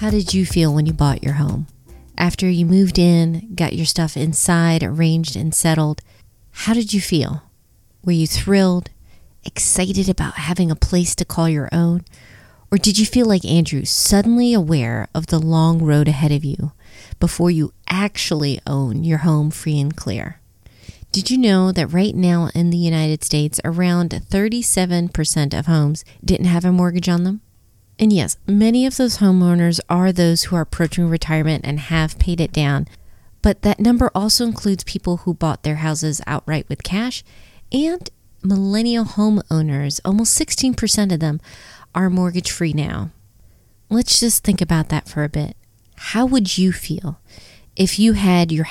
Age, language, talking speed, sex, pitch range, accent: 30-49, English, 170 wpm, female, 150-190 Hz, American